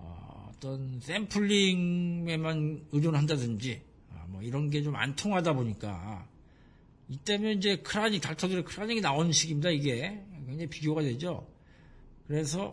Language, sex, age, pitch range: Korean, male, 50-69, 120-165 Hz